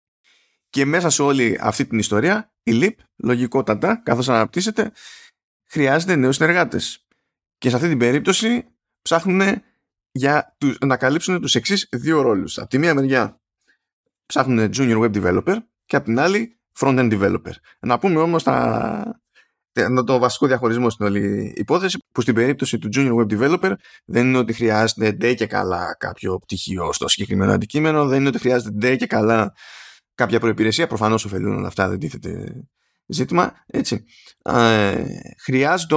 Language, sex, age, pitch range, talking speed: Greek, male, 20-39, 110-140 Hz, 145 wpm